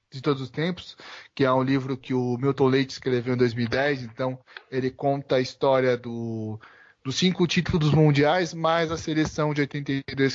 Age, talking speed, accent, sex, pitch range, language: 20-39, 175 wpm, Brazilian, male, 125-165 Hz, English